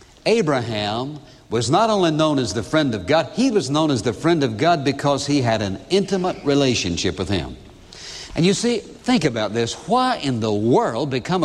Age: 60-79